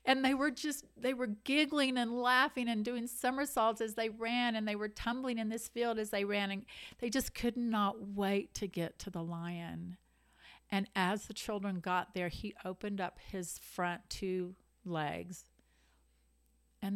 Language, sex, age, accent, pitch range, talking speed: English, female, 50-69, American, 180-225 Hz, 175 wpm